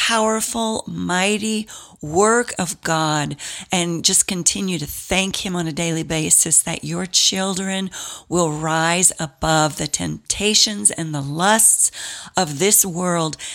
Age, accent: 40-59, American